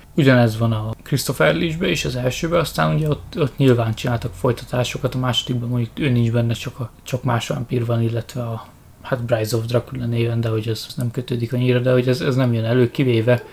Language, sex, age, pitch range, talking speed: Hungarian, male, 20-39, 115-130 Hz, 220 wpm